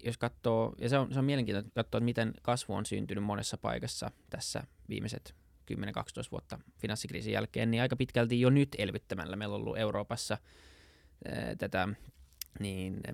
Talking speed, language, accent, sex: 160 wpm, Finnish, native, male